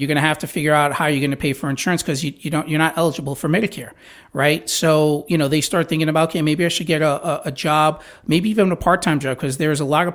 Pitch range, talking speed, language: 150-180 Hz, 295 wpm, English